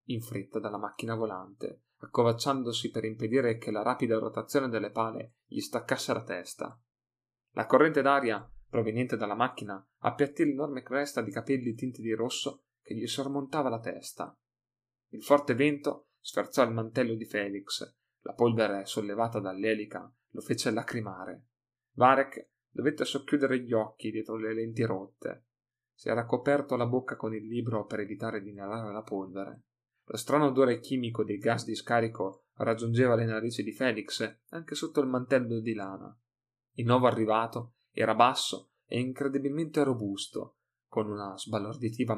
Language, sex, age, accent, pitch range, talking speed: Italian, male, 30-49, native, 110-130 Hz, 150 wpm